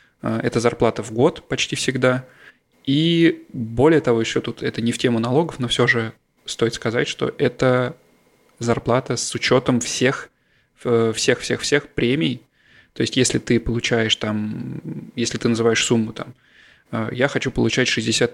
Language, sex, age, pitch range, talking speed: Russian, male, 20-39, 115-125 Hz, 145 wpm